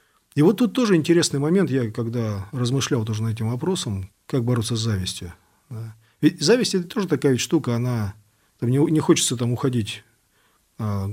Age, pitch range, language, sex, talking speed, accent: 40-59, 110-140 Hz, Russian, male, 160 wpm, native